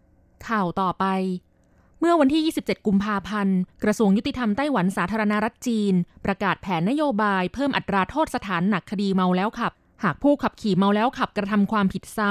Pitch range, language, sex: 185-235 Hz, Thai, female